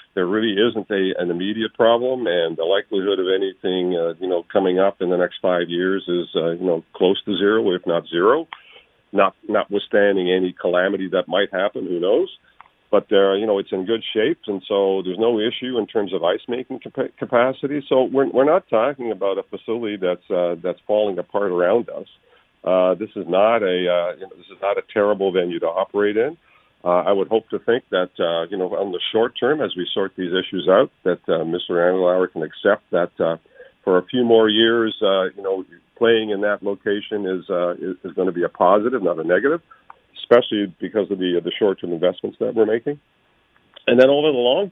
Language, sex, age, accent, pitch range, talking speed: English, male, 50-69, American, 90-110 Hz, 215 wpm